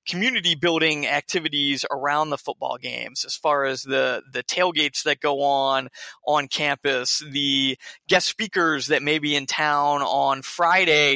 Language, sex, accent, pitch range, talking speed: English, male, American, 140-160 Hz, 145 wpm